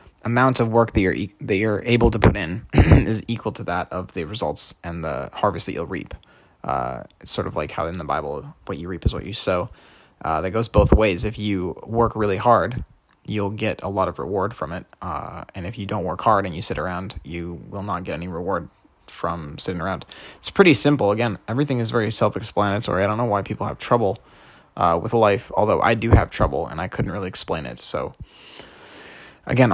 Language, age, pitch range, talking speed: English, 20-39, 90-115 Hz, 220 wpm